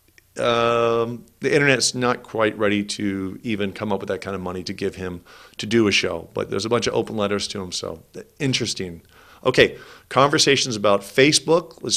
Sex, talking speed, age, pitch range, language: male, 190 wpm, 40-59, 100-125 Hz, English